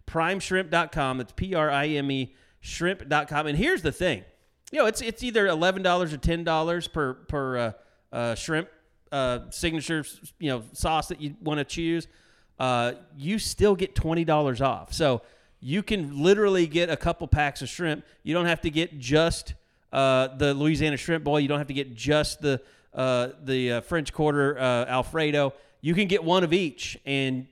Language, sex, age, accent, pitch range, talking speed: English, male, 30-49, American, 130-170 Hz, 180 wpm